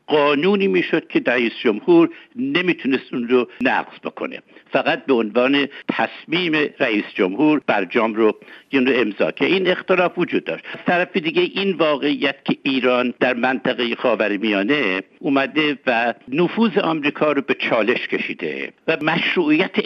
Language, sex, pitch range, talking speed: Persian, male, 120-165 Hz, 130 wpm